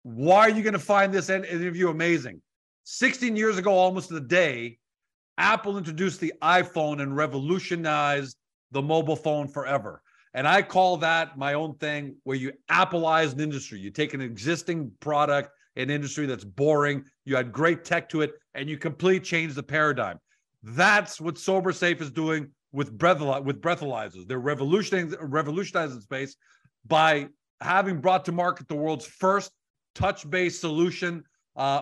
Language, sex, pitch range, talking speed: English, male, 145-180 Hz, 155 wpm